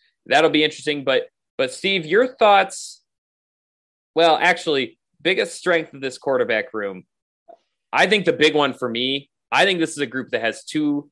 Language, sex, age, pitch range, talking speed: English, male, 30-49, 125-170 Hz, 175 wpm